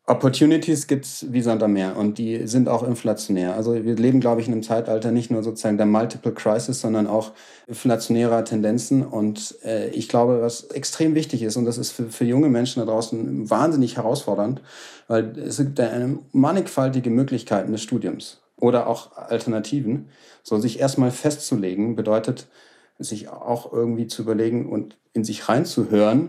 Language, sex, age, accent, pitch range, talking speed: German, male, 40-59, German, 110-135 Hz, 165 wpm